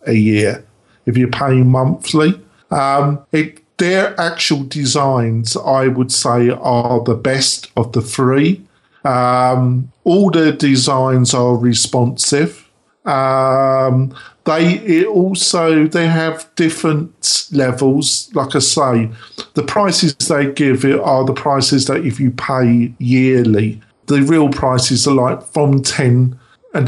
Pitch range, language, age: 120-145 Hz, English, 50-69